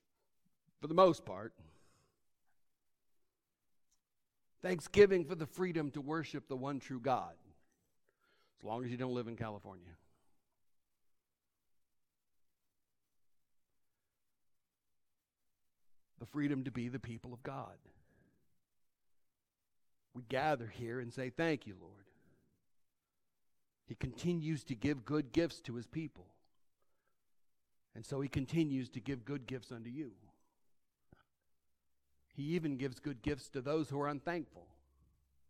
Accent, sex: American, male